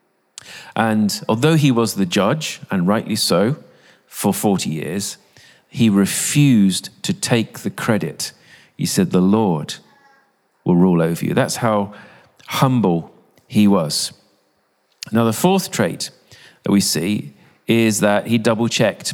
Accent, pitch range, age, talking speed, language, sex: British, 115-165 Hz, 40-59, 130 wpm, English, male